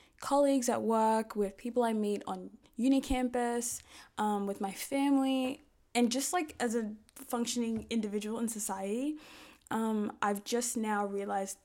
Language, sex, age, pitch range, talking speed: English, female, 10-29, 195-245 Hz, 145 wpm